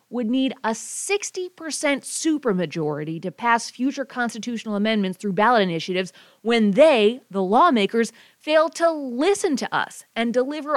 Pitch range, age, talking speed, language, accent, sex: 190-270 Hz, 30-49, 135 wpm, English, American, female